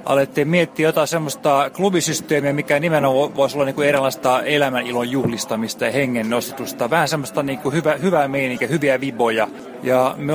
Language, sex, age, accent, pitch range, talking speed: Finnish, male, 30-49, native, 125-155 Hz, 145 wpm